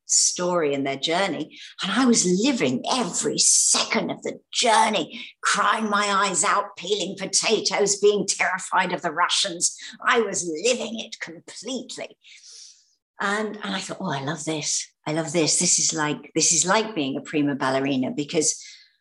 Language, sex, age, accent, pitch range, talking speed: English, female, 50-69, British, 150-205 Hz, 160 wpm